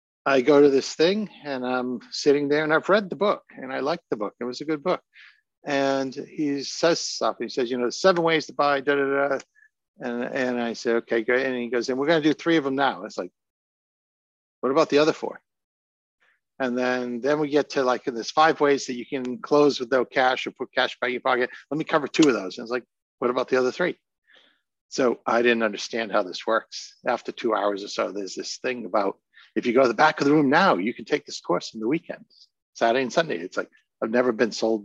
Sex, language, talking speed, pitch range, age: male, English, 250 wpm, 120-145 Hz, 60-79